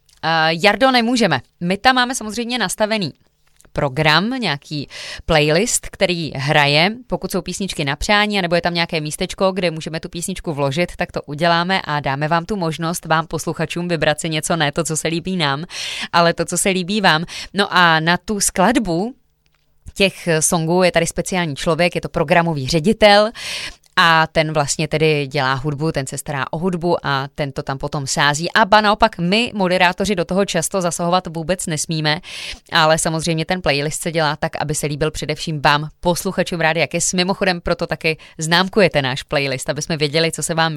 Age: 20-39